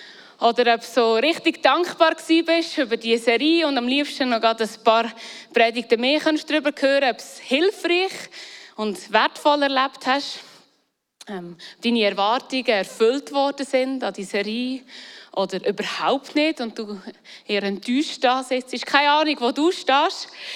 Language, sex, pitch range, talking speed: German, female, 210-275 Hz, 160 wpm